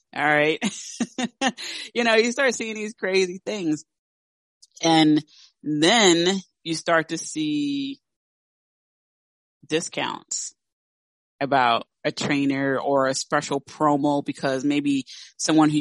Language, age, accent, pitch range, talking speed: English, 30-49, American, 145-180 Hz, 105 wpm